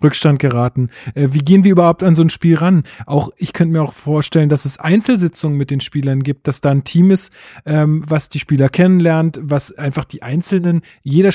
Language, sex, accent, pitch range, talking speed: German, male, German, 145-175 Hz, 205 wpm